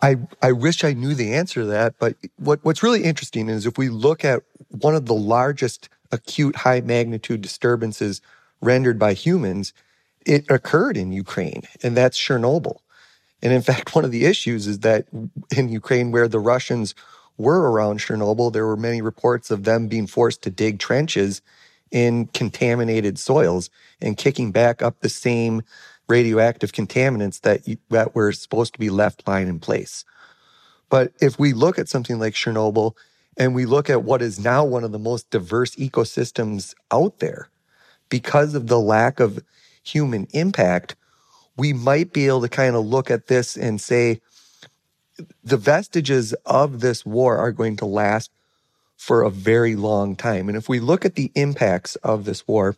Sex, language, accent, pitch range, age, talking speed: male, English, American, 110-130 Hz, 30-49, 175 wpm